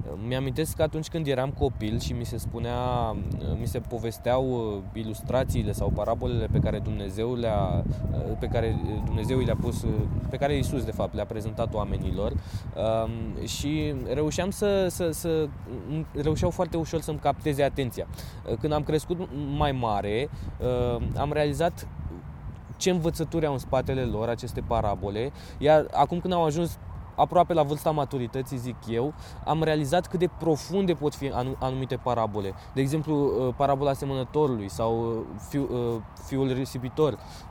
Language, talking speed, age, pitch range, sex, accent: Romanian, 135 wpm, 20-39, 110-150 Hz, male, native